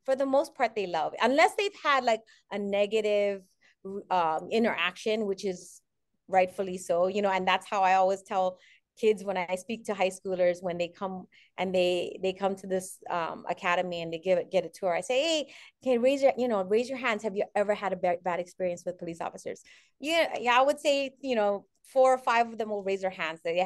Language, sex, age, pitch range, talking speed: English, female, 30-49, 185-230 Hz, 235 wpm